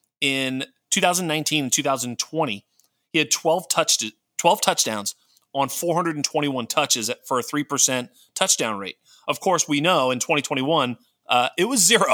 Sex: male